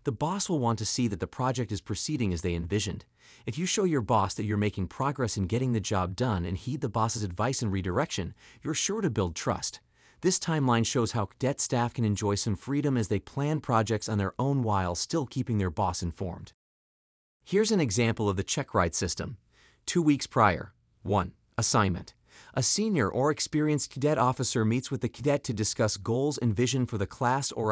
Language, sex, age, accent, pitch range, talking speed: English, male, 30-49, American, 105-140 Hz, 205 wpm